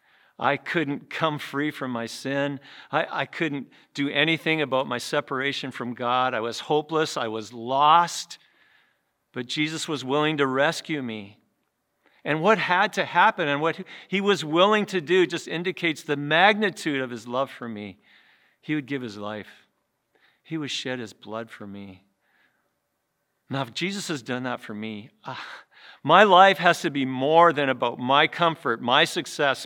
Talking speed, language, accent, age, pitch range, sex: 170 wpm, English, American, 50-69, 130-170 Hz, male